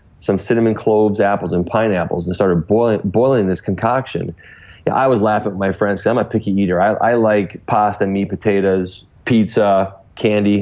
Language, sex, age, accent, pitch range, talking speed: English, male, 30-49, American, 95-110 Hz, 180 wpm